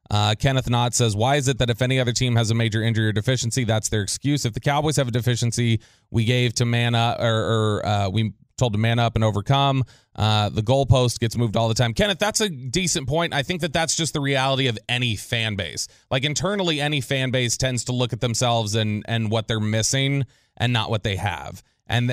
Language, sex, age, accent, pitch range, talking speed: English, male, 30-49, American, 110-135 Hz, 235 wpm